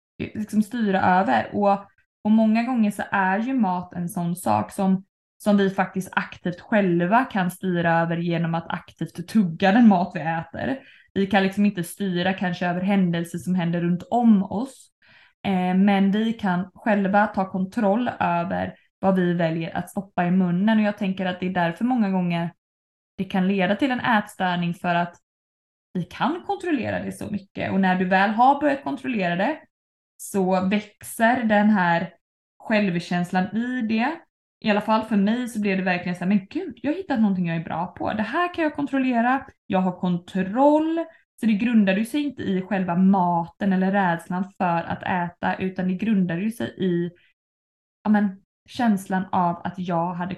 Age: 20-39